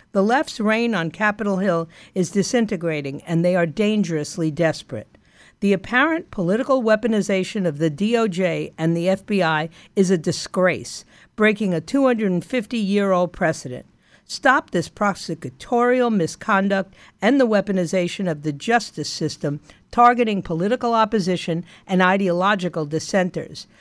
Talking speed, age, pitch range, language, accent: 120 wpm, 50-69, 170-230 Hz, English, American